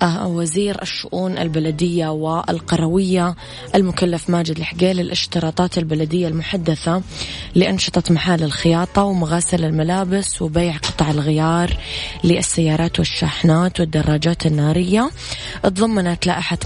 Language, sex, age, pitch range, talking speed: Arabic, female, 20-39, 155-180 Hz, 85 wpm